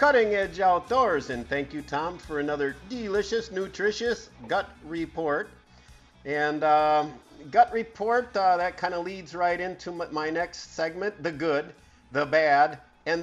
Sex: male